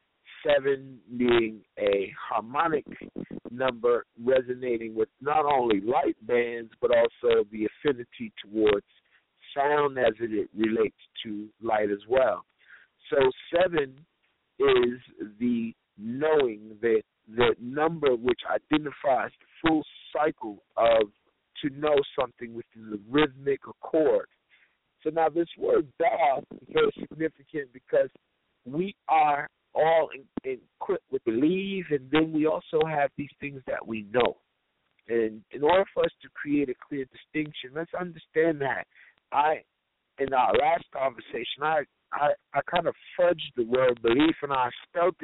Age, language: 50-69, English